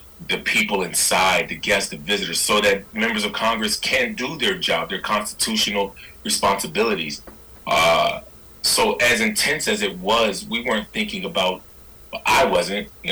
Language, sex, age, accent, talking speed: English, male, 30-49, American, 150 wpm